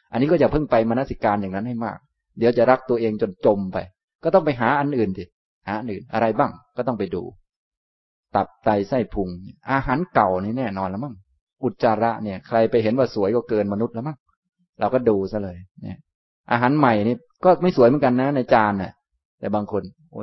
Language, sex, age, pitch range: Thai, male, 20-39, 95-125 Hz